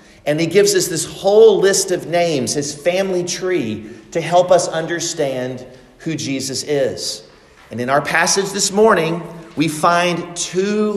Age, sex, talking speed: 40-59, male, 155 wpm